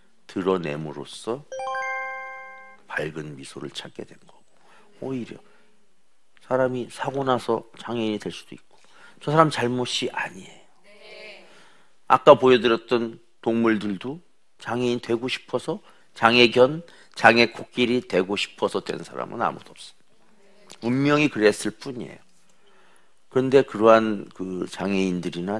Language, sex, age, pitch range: Korean, male, 50-69, 90-130 Hz